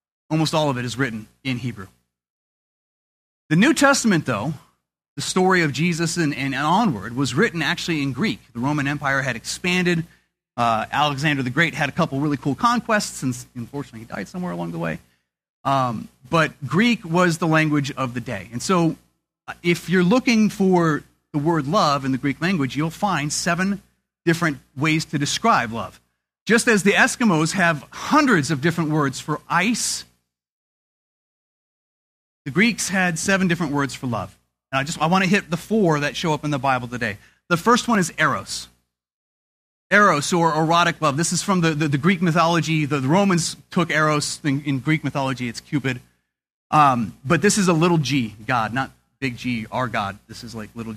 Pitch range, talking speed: 120-170 Hz, 185 wpm